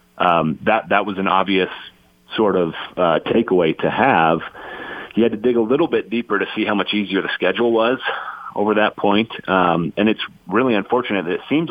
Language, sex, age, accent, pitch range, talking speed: English, male, 40-59, American, 85-105 Hz, 200 wpm